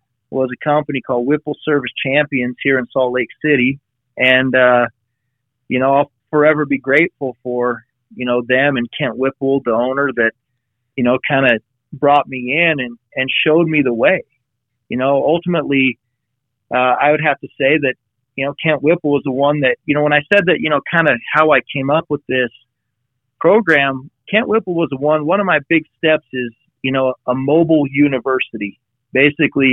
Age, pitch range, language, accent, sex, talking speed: 30-49, 125-145 Hz, English, American, male, 190 wpm